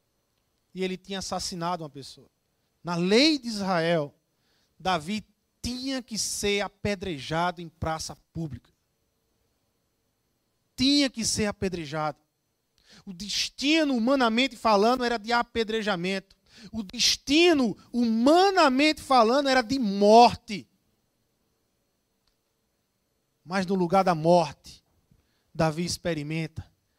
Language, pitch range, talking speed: Portuguese, 145-235 Hz, 95 wpm